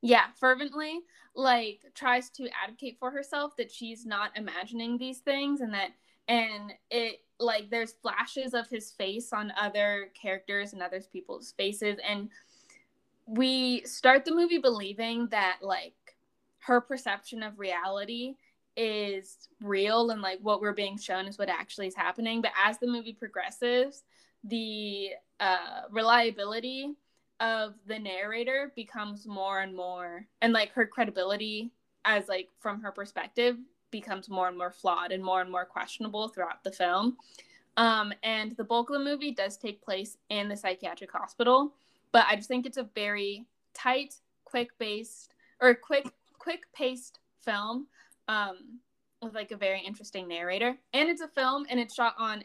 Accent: American